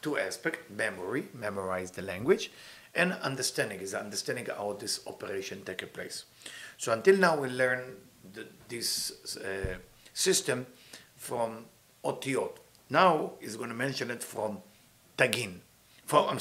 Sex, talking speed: male, 130 wpm